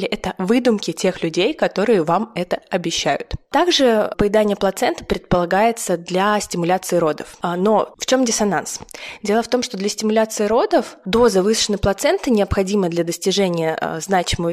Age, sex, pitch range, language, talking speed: 20-39, female, 180-225 Hz, Russian, 135 wpm